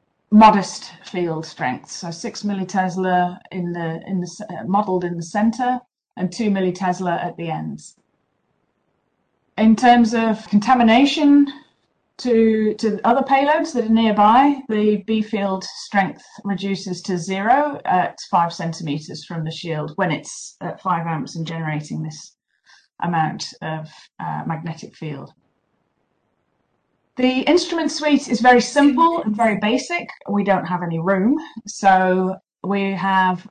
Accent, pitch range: British, 185-245 Hz